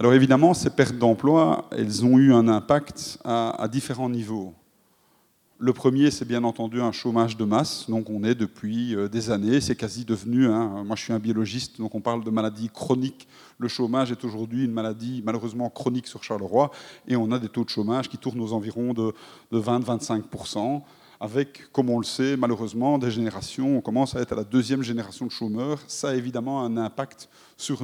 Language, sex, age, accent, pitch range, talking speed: French, male, 30-49, French, 115-130 Hz, 200 wpm